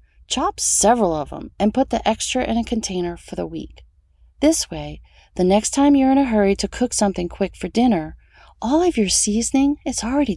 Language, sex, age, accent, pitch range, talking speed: English, female, 40-59, American, 165-230 Hz, 205 wpm